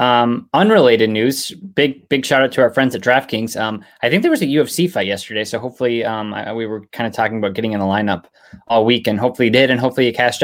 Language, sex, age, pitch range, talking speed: English, male, 20-39, 110-140 Hz, 255 wpm